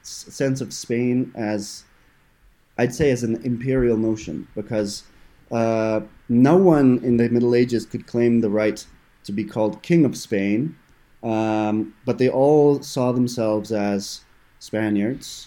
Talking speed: 140 wpm